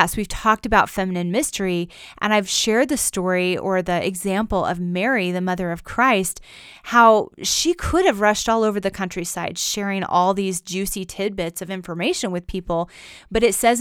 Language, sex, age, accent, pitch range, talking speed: English, female, 30-49, American, 180-220 Hz, 175 wpm